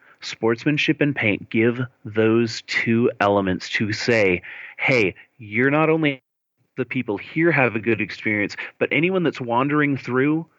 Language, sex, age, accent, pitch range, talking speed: English, male, 30-49, American, 110-145 Hz, 140 wpm